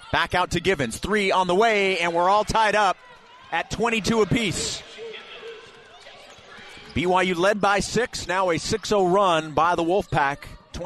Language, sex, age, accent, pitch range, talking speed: English, male, 40-59, American, 155-215 Hz, 150 wpm